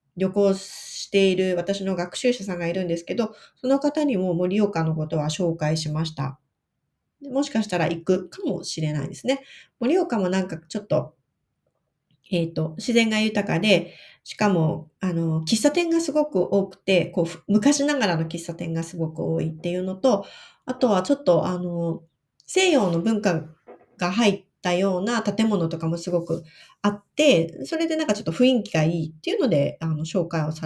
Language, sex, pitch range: Japanese, female, 165-215 Hz